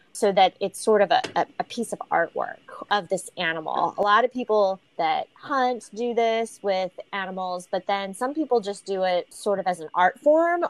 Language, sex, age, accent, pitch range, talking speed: English, female, 20-39, American, 195-275 Hz, 200 wpm